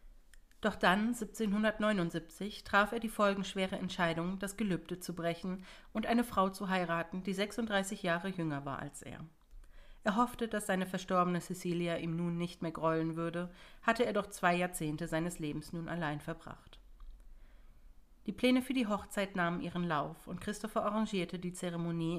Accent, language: German, German